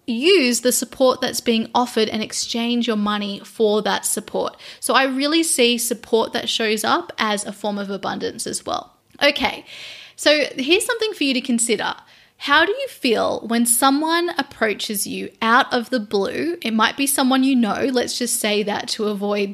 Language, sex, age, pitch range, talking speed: English, female, 10-29, 210-255 Hz, 185 wpm